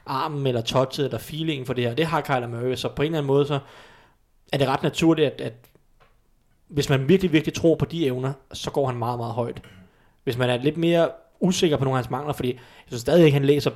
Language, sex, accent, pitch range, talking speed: Danish, male, native, 125-150 Hz, 250 wpm